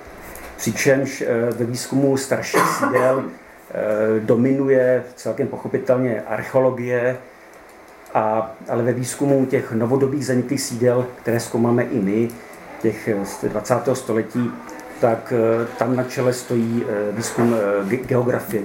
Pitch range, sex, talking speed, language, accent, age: 115-135 Hz, male, 105 wpm, Czech, native, 50-69